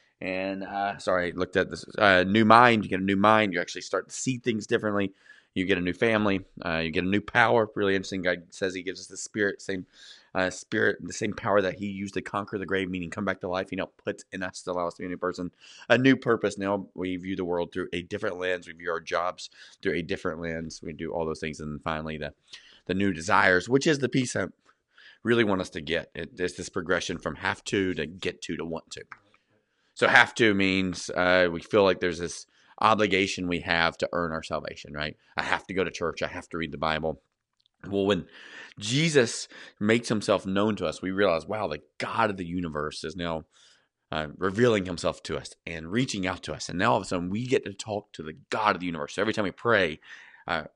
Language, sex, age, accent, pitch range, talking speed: English, male, 30-49, American, 85-100 Hz, 245 wpm